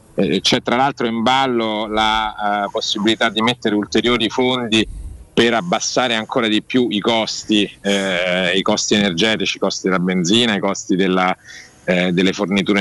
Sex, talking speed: male, 155 wpm